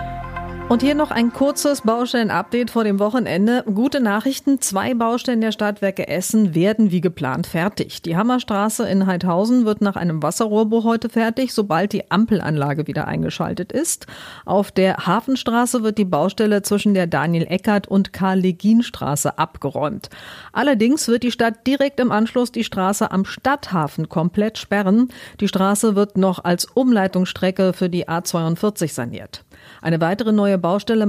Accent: German